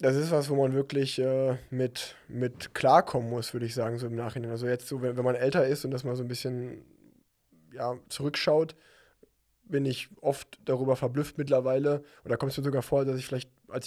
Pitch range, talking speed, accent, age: 120-130 Hz, 215 wpm, German, 20-39